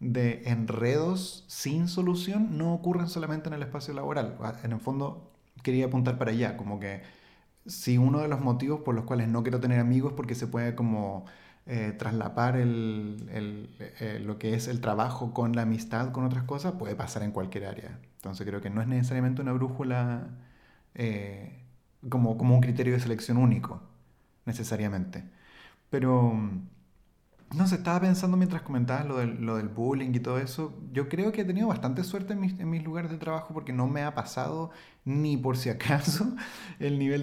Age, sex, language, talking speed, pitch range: 30-49, male, English, 185 wpm, 115-160 Hz